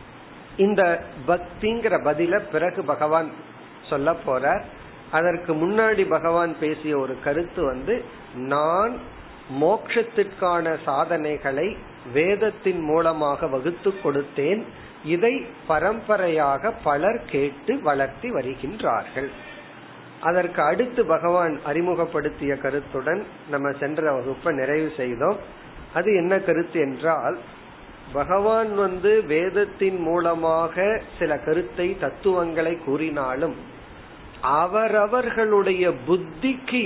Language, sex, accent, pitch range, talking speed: Tamil, male, native, 155-200 Hz, 65 wpm